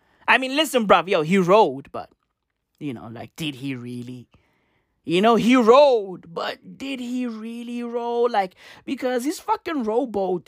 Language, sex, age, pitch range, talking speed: English, male, 20-39, 175-250 Hz, 160 wpm